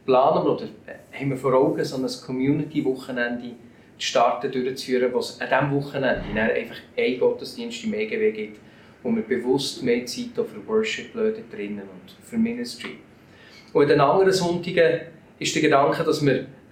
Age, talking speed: 40-59, 150 wpm